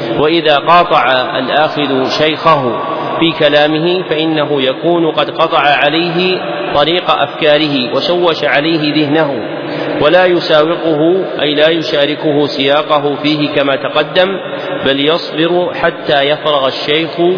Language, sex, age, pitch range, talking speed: Arabic, male, 40-59, 145-165 Hz, 105 wpm